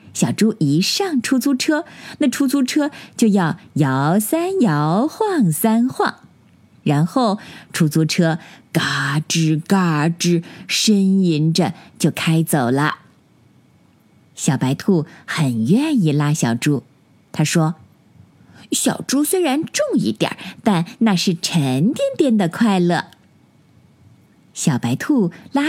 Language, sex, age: Chinese, female, 20-39